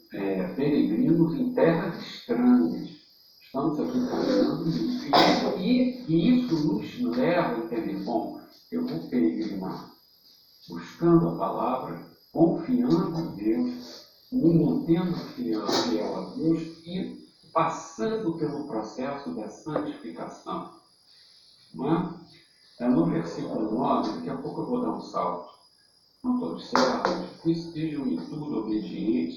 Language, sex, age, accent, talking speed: Portuguese, male, 60-79, Brazilian, 120 wpm